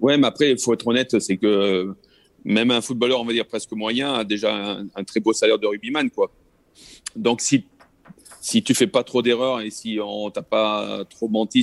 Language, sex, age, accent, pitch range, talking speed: French, male, 30-49, French, 95-115 Hz, 225 wpm